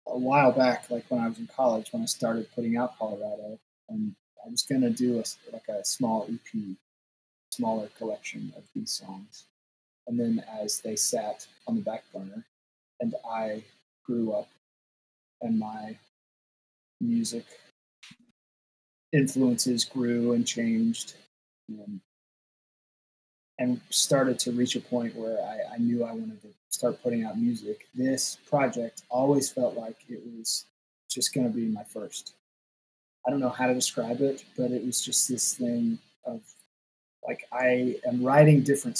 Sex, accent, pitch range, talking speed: male, American, 115-150 Hz, 150 wpm